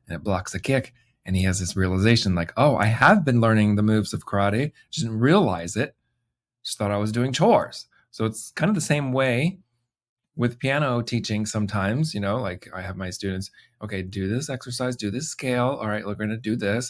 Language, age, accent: English, 30-49, American